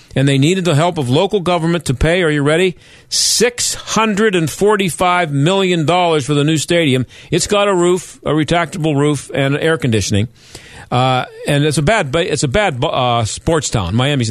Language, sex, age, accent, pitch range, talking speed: English, male, 50-69, American, 130-170 Hz, 170 wpm